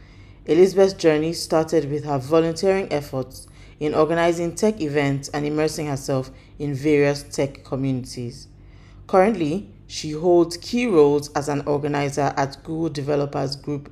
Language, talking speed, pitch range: English, 130 wpm, 135-155 Hz